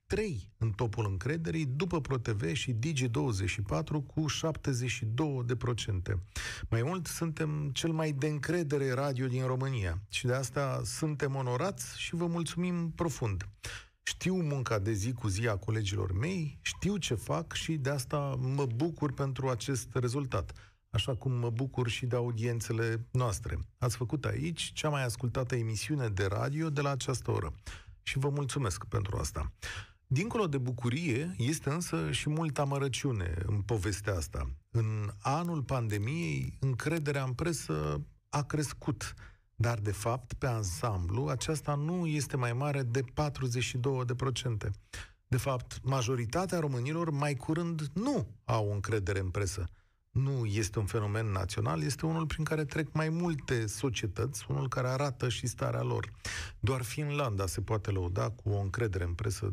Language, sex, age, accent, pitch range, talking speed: Romanian, male, 40-59, native, 110-145 Hz, 145 wpm